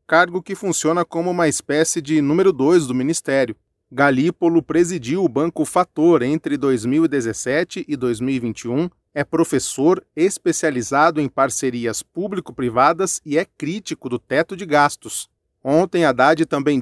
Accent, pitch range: Brazilian, 140-175 Hz